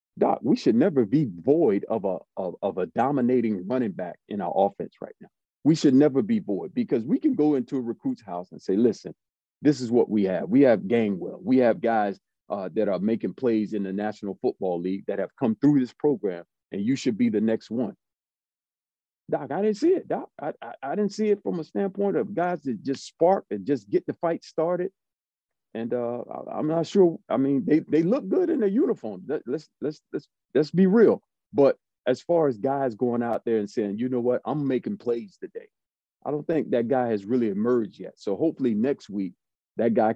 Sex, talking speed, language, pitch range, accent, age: male, 220 wpm, English, 110-155 Hz, American, 40-59